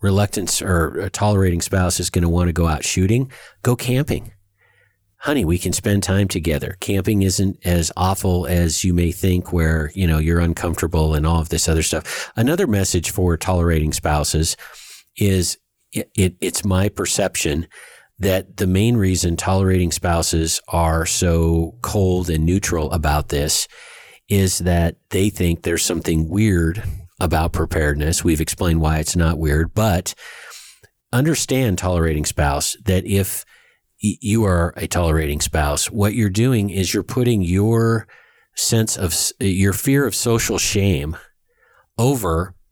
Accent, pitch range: American, 85-105 Hz